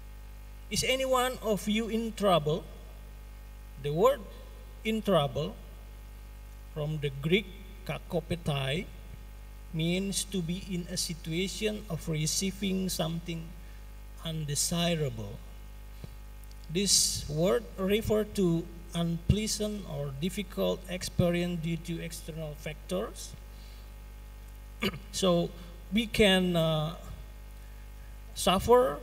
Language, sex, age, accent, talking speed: Indonesian, male, 40-59, native, 85 wpm